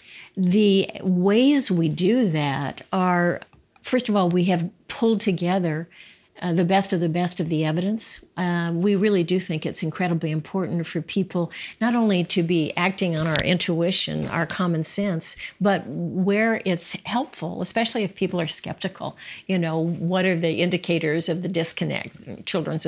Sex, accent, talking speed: female, American, 165 wpm